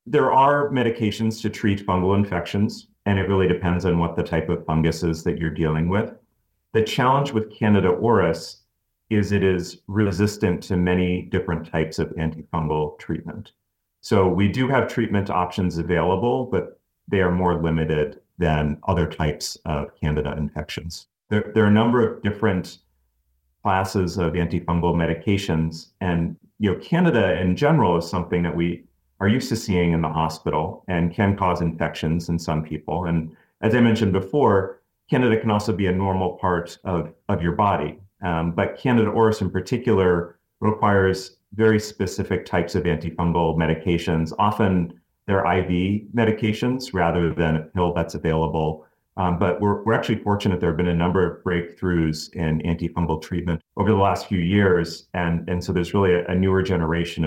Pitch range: 85-100 Hz